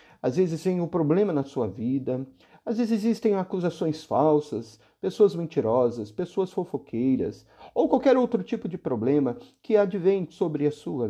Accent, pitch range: Brazilian, 125-200 Hz